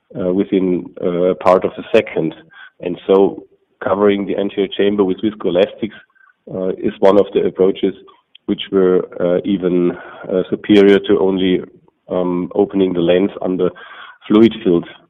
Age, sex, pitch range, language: 40-59, male, 90-105 Hz, English